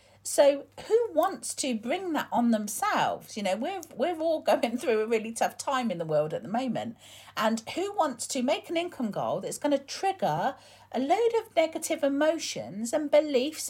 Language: English